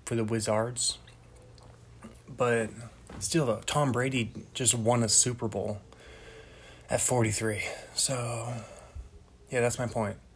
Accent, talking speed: American, 110 wpm